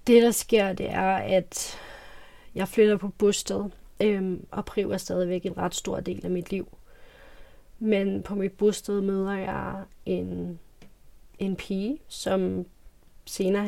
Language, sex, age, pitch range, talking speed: Danish, female, 30-49, 180-205 Hz, 145 wpm